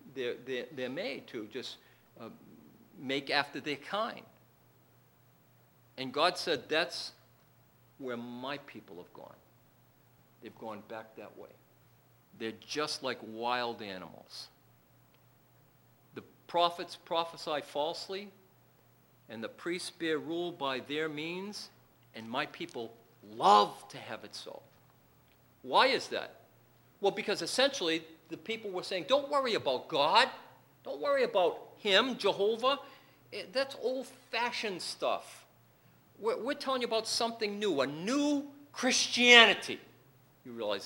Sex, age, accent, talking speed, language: male, 50-69, American, 120 wpm, English